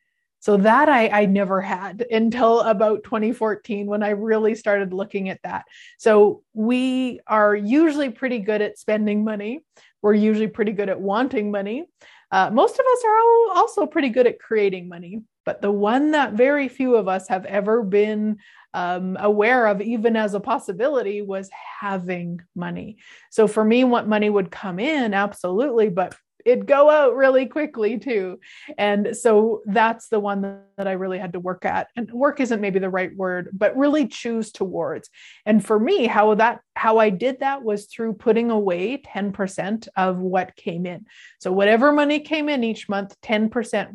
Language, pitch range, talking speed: English, 200-245 Hz, 175 wpm